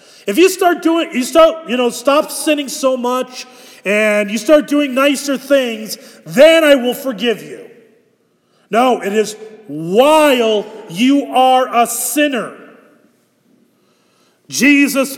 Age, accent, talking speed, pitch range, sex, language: 40-59, American, 125 wpm, 230-300 Hz, male, English